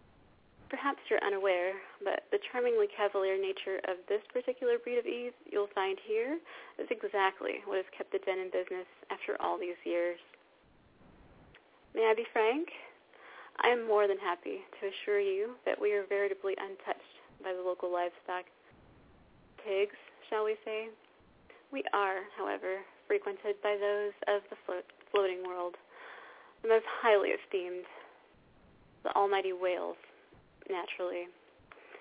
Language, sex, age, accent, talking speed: English, female, 30-49, American, 135 wpm